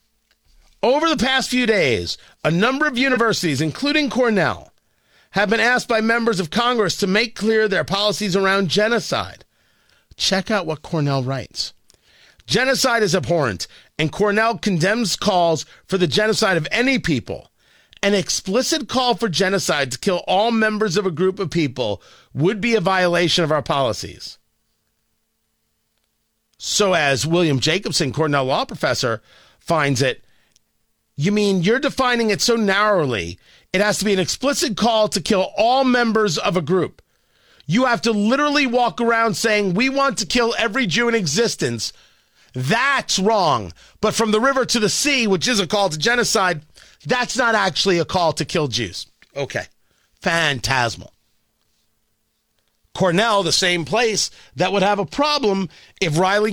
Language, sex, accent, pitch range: English, male, American, 175-235 Hz